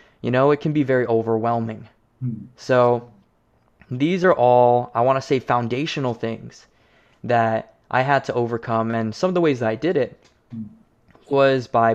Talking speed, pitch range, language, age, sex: 165 wpm, 115-135 Hz, English, 20-39, male